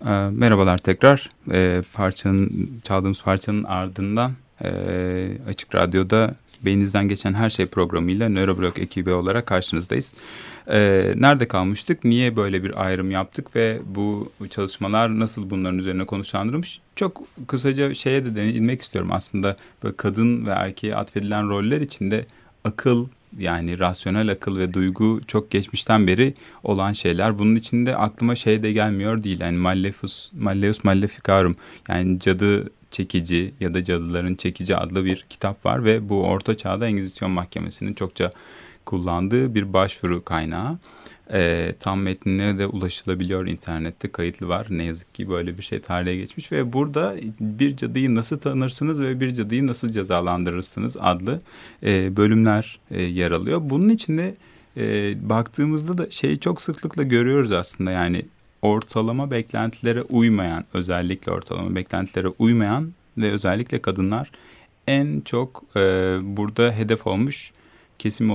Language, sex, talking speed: Turkish, male, 130 wpm